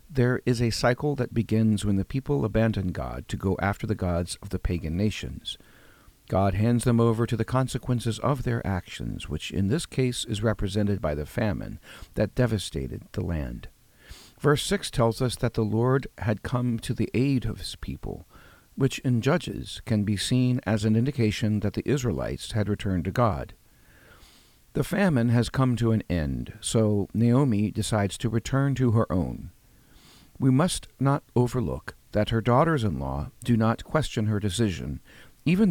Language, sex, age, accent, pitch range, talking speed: English, male, 50-69, American, 100-125 Hz, 170 wpm